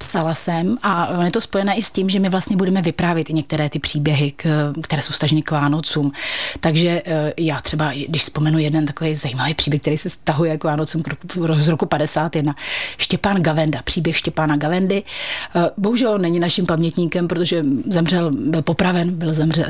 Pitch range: 155-180 Hz